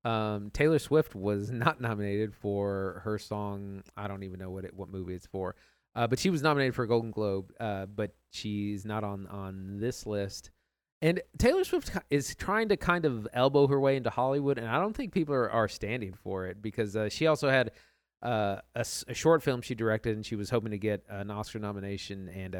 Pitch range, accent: 100-130 Hz, American